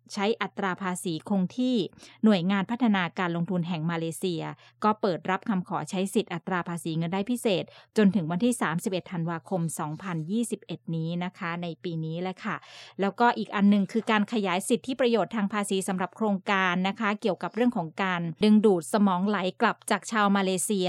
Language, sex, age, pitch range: English, female, 20-39, 180-220 Hz